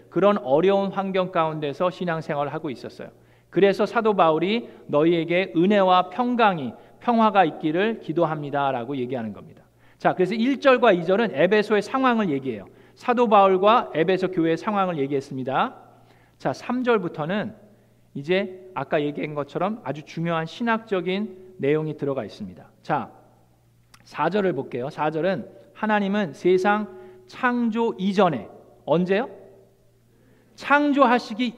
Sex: male